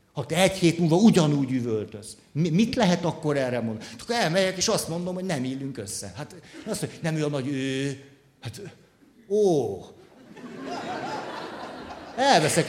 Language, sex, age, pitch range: Hungarian, male, 60-79, 125-175 Hz